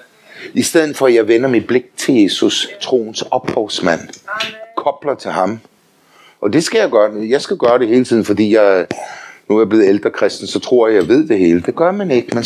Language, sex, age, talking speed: Danish, male, 60-79, 220 wpm